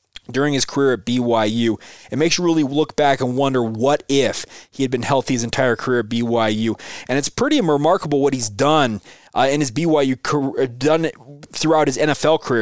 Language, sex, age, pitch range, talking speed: English, male, 20-39, 115-145 Hz, 190 wpm